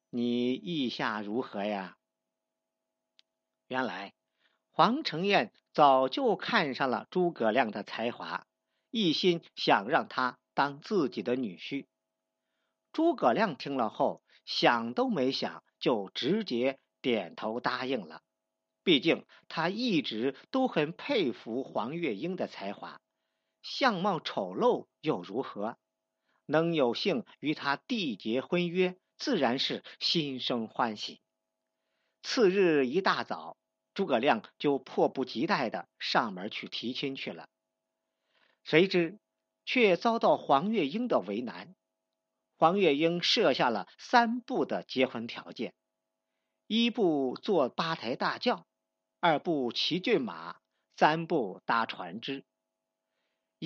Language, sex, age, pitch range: Chinese, male, 50-69, 120-195 Hz